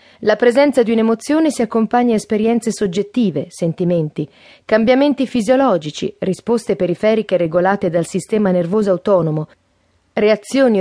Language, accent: Italian, native